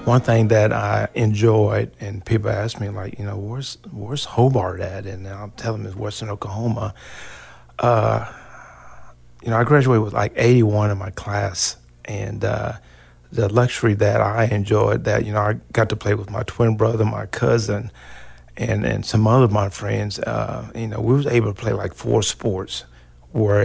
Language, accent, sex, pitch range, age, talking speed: English, American, male, 105-115 Hz, 40-59, 185 wpm